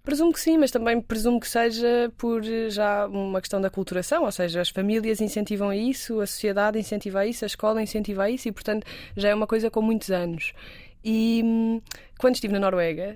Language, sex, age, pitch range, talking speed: Portuguese, female, 20-39, 185-220 Hz, 190 wpm